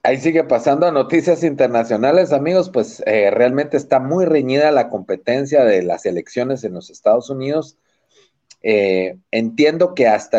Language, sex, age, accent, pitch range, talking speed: Spanish, male, 40-59, Mexican, 115-155 Hz, 150 wpm